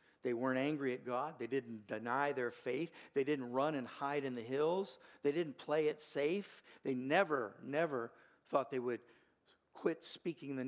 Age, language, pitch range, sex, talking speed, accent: 50-69, English, 135-170 Hz, male, 180 wpm, American